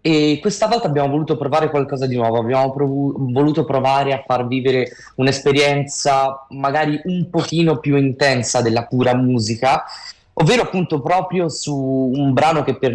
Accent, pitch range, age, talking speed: native, 120-145 Hz, 20-39, 155 wpm